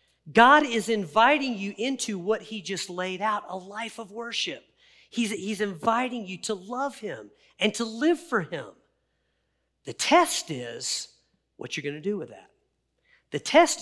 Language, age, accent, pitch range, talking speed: English, 40-59, American, 160-225 Hz, 165 wpm